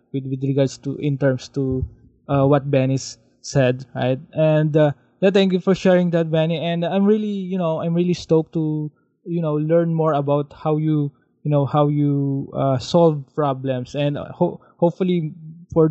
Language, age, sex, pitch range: English, 20-39, male, 140-160 Hz